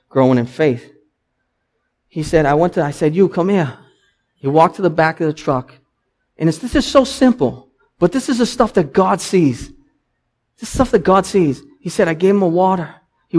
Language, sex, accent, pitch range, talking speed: English, male, American, 145-225 Hz, 225 wpm